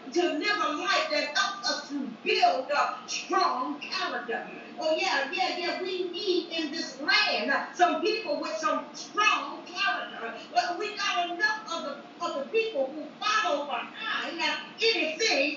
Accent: American